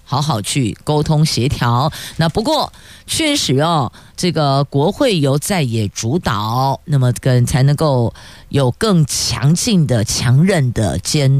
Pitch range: 135-190 Hz